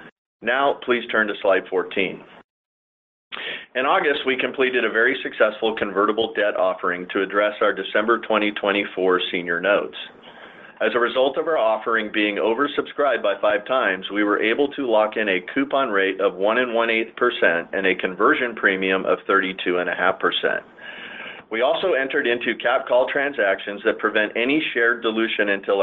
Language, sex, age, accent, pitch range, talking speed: English, male, 40-59, American, 95-115 Hz, 165 wpm